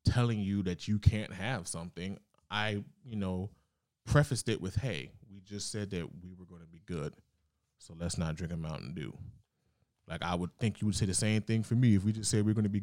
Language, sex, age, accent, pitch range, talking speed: English, male, 20-39, American, 90-105 Hz, 245 wpm